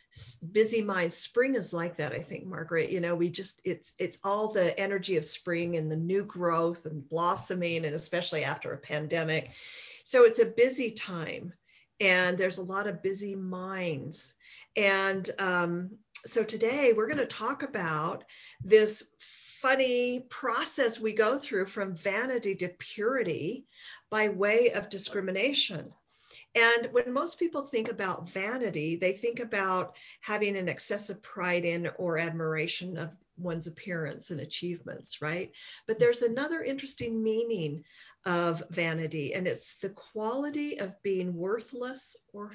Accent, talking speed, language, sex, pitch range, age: American, 145 wpm, English, female, 170-230 Hz, 50-69